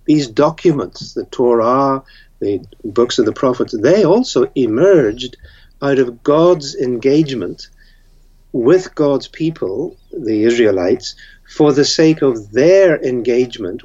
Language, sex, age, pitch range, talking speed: English, male, 60-79, 120-155 Hz, 115 wpm